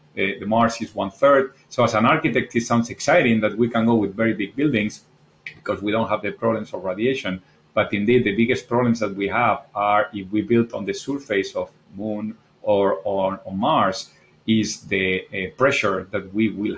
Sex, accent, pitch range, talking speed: male, Spanish, 100-115 Hz, 200 wpm